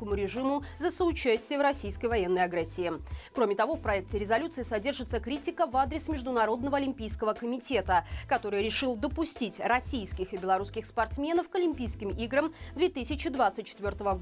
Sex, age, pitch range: female, 20-39, 210-285 Hz